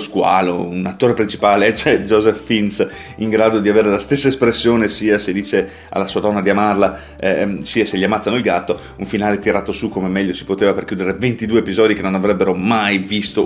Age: 30-49